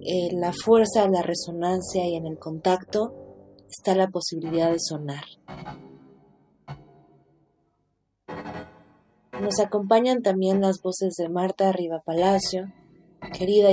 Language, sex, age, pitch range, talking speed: Spanish, female, 30-49, 170-210 Hz, 105 wpm